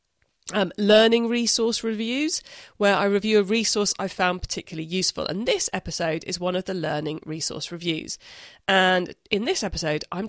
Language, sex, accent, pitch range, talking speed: English, female, British, 165-215 Hz, 165 wpm